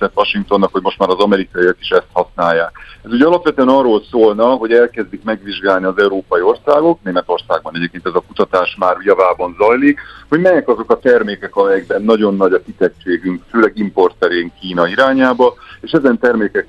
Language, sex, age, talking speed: Hungarian, male, 50-69, 165 wpm